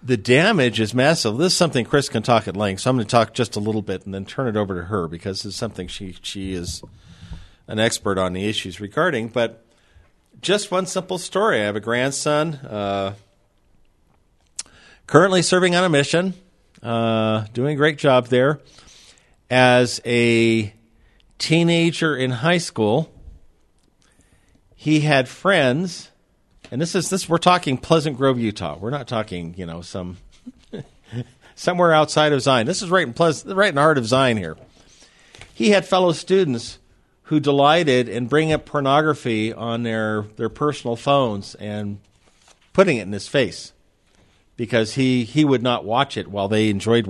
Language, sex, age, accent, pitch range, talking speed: English, male, 50-69, American, 100-150 Hz, 170 wpm